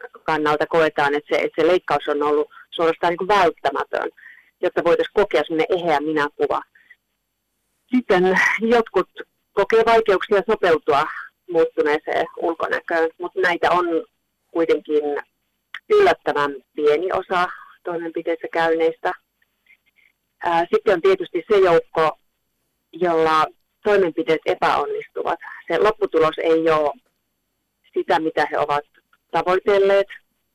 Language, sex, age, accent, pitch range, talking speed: Finnish, female, 30-49, native, 155-210 Hz, 100 wpm